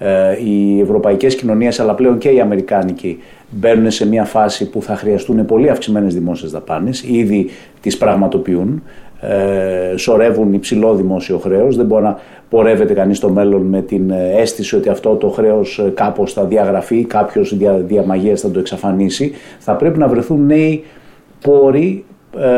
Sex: male